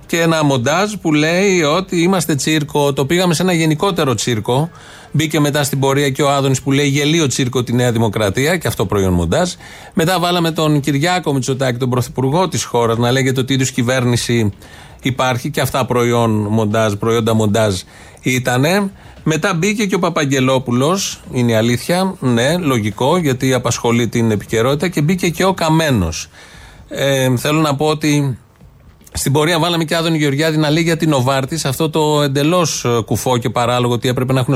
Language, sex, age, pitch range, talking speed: Greek, male, 30-49, 120-160 Hz, 170 wpm